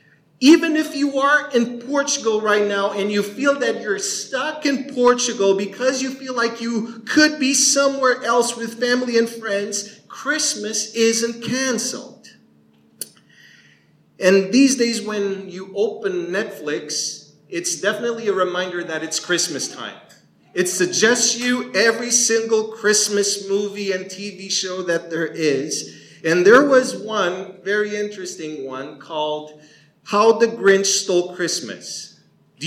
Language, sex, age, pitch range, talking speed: English, male, 40-59, 155-240 Hz, 135 wpm